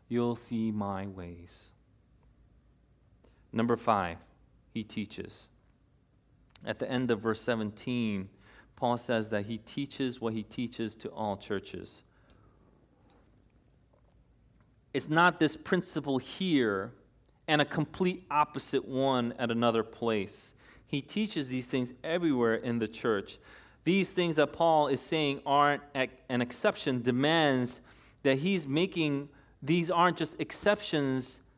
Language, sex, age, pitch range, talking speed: English, male, 30-49, 115-145 Hz, 120 wpm